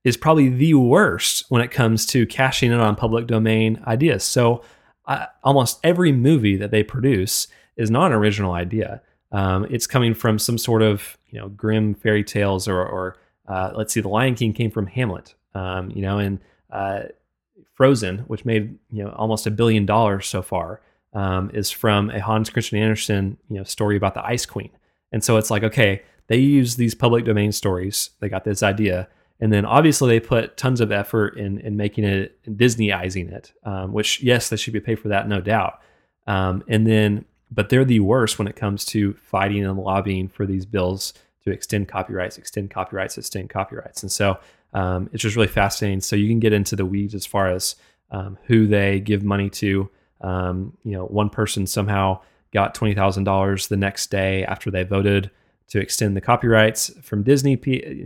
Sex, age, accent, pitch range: male, 30-49, American, 95-115 Hz